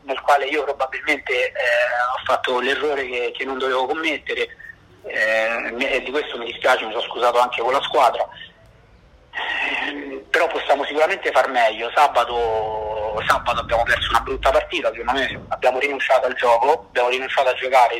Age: 30-49